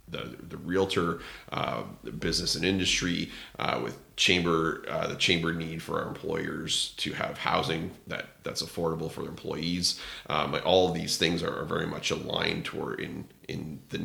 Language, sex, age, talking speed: English, male, 30-49, 170 wpm